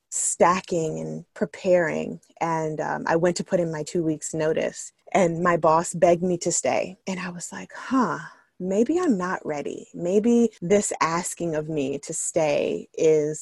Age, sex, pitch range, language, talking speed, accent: 20-39, female, 160-215 Hz, English, 170 wpm, American